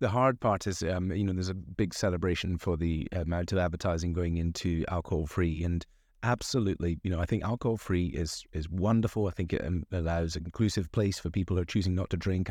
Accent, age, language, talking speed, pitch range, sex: British, 30-49, English, 210 wpm, 85-100 Hz, male